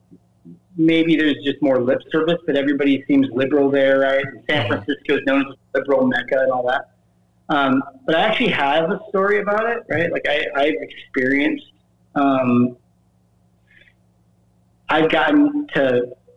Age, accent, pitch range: 40-59, American, 115-155 Hz